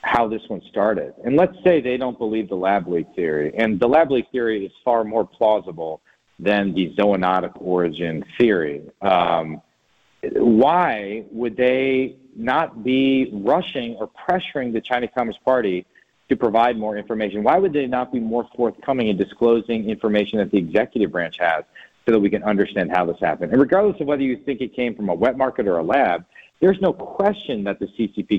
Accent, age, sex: American, 40-59, male